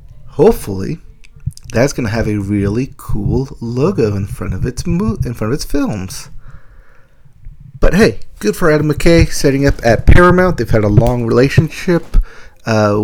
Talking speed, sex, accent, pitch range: 155 wpm, male, American, 110-160 Hz